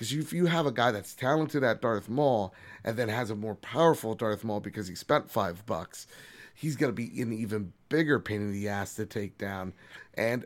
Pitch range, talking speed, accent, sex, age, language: 105-125 Hz, 230 wpm, American, male, 30-49, English